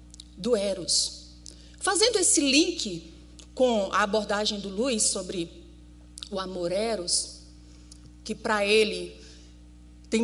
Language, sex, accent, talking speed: Portuguese, female, Brazilian, 105 wpm